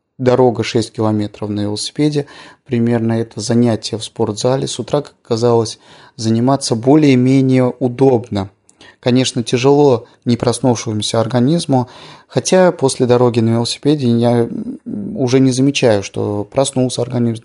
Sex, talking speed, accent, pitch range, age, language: male, 115 wpm, native, 110-135 Hz, 30-49, Russian